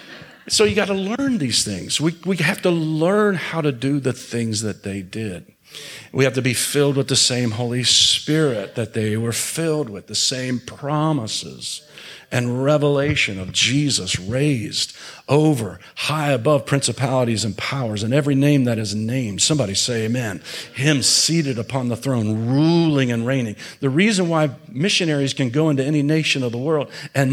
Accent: American